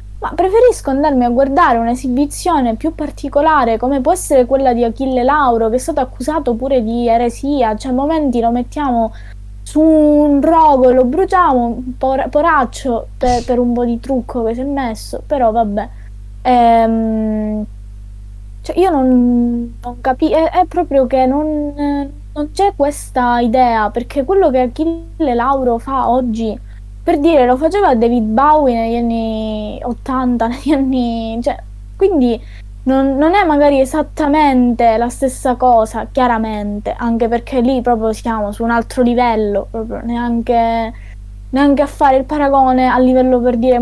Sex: female